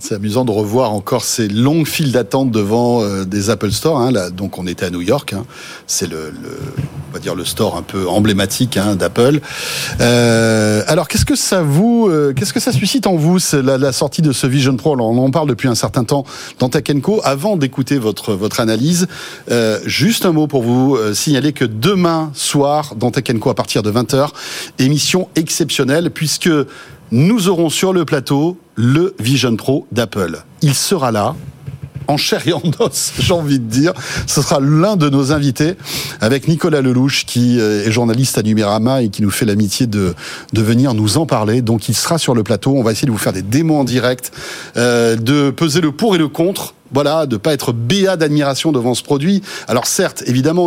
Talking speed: 210 wpm